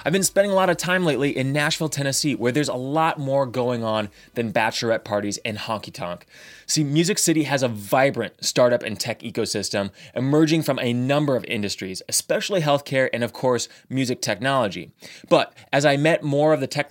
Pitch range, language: 115-155 Hz, English